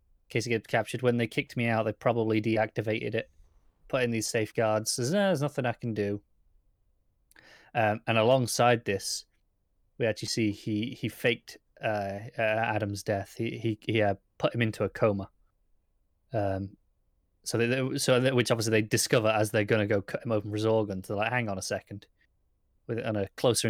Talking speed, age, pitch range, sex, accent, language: 195 wpm, 20-39, 105-120 Hz, male, British, English